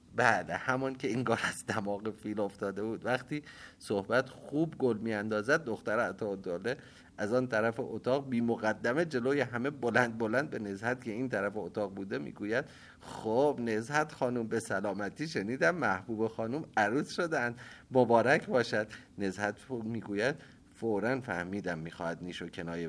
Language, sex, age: Persian, male, 30-49